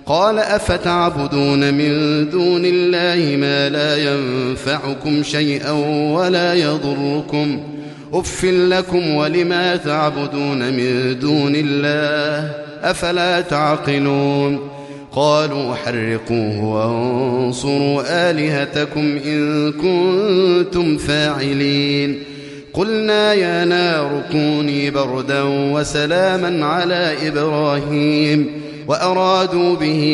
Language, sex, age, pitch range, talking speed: Arabic, male, 30-49, 140-175 Hz, 75 wpm